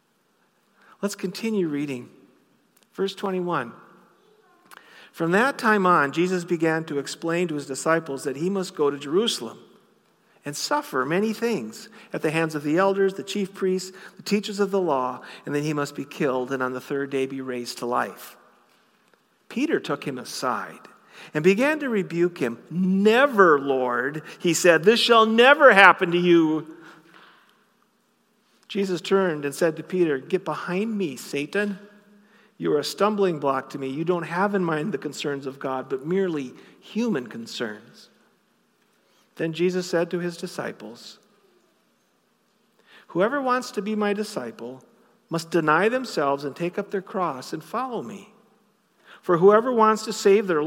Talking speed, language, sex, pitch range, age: 160 wpm, English, male, 155-215 Hz, 50-69